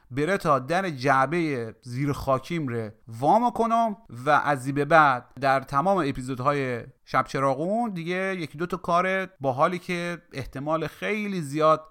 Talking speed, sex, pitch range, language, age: 140 wpm, male, 130-175 Hz, Persian, 30-49